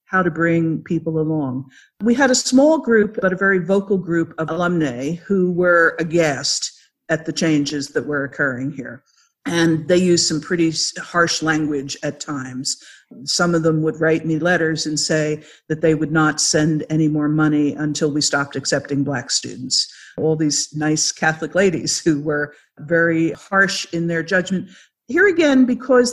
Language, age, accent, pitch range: English, 50-69, American, 155-195 Hz